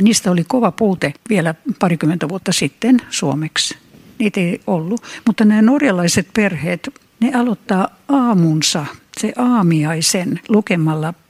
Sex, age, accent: female, 60-79, native